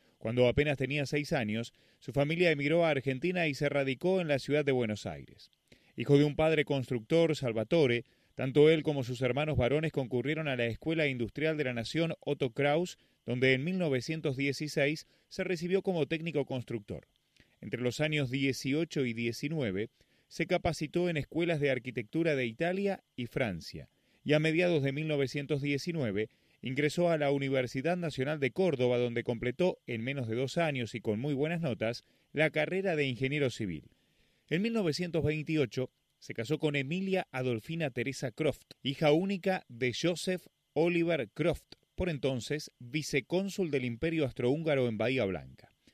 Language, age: Spanish, 30-49